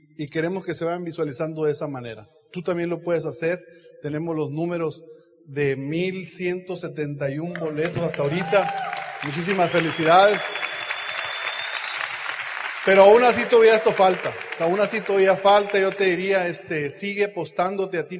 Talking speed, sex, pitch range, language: 135 wpm, male, 155-190 Hz, Spanish